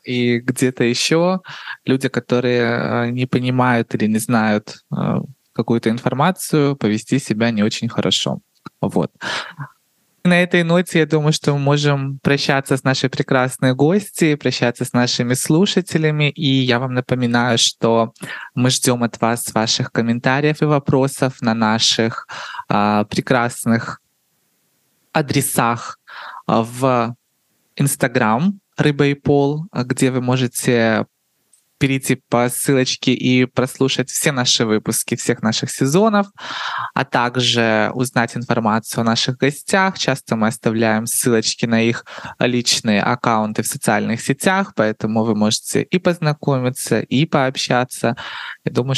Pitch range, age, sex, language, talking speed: 115-140 Hz, 20-39, male, Russian, 120 wpm